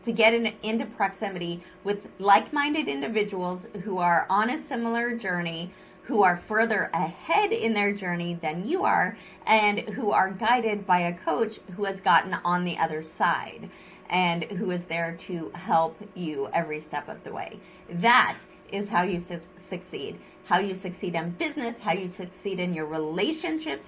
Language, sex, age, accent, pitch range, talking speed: English, female, 30-49, American, 180-225 Hz, 165 wpm